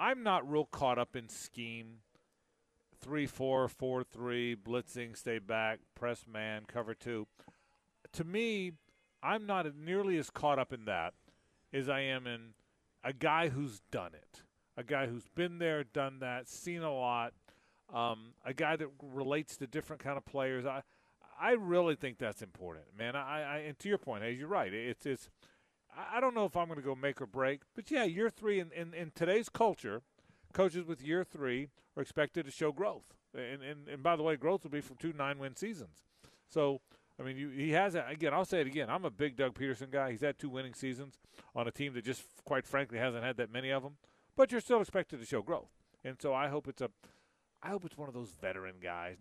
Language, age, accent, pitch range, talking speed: English, 40-59, American, 125-165 Hz, 210 wpm